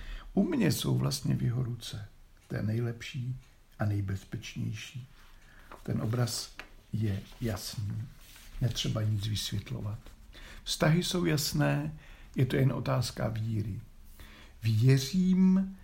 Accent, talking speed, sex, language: native, 105 wpm, male, Czech